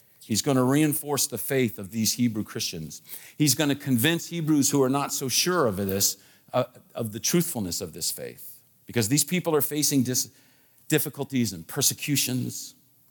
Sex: male